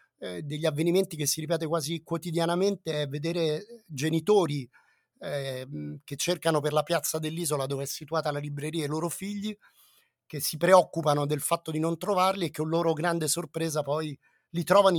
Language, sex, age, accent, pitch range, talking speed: Italian, male, 30-49, native, 145-175 Hz, 170 wpm